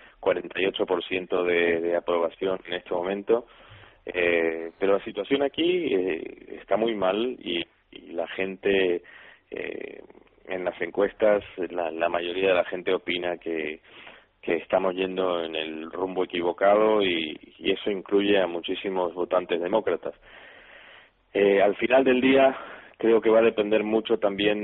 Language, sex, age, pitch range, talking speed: Spanish, male, 30-49, 90-110 Hz, 140 wpm